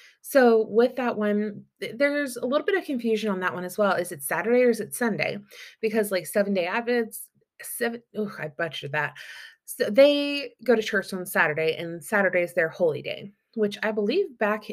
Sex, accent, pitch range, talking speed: female, American, 175-225 Hz, 200 wpm